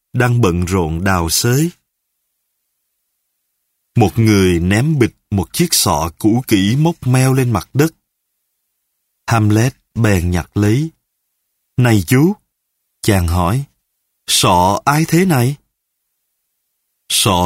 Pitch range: 95-135 Hz